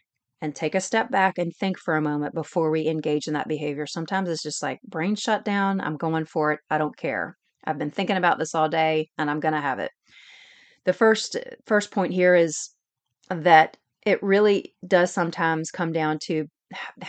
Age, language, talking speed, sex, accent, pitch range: 30-49, English, 205 wpm, female, American, 155-180 Hz